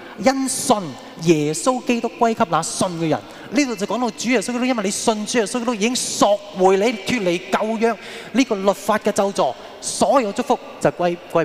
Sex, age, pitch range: male, 20-39, 145-215 Hz